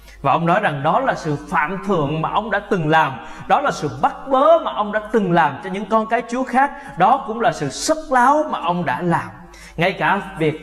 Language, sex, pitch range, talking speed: Vietnamese, male, 170-265 Hz, 245 wpm